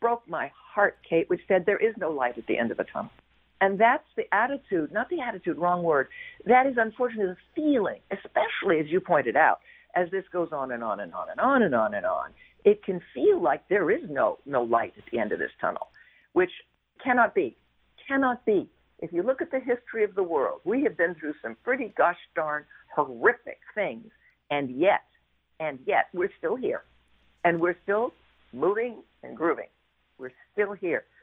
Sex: female